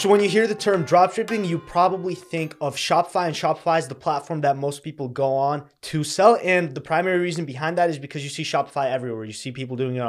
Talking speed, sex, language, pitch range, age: 245 wpm, male, English, 130-160 Hz, 20-39